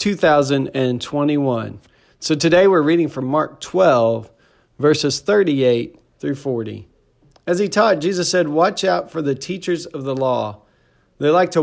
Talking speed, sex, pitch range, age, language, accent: 145 wpm, male, 130-160 Hz, 40-59, English, American